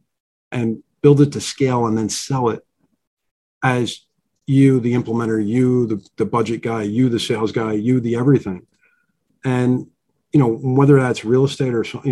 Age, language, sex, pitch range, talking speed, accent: 40-59, English, male, 110-135 Hz, 170 wpm, American